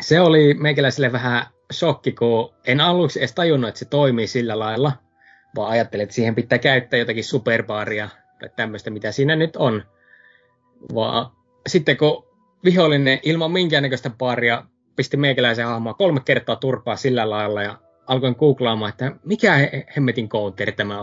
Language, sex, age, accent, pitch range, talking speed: Finnish, male, 20-39, native, 115-165 Hz, 150 wpm